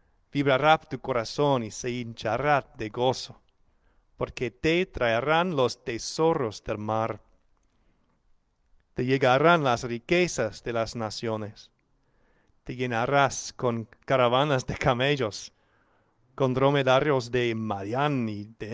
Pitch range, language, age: 115-140 Hz, English, 40-59